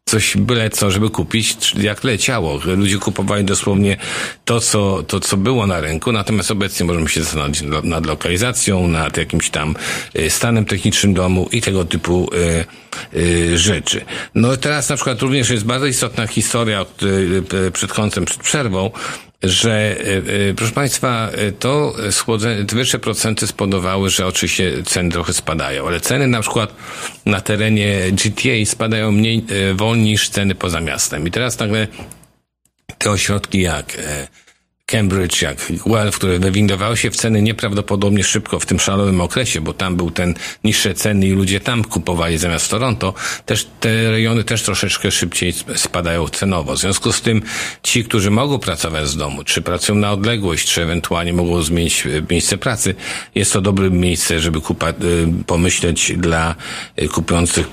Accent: native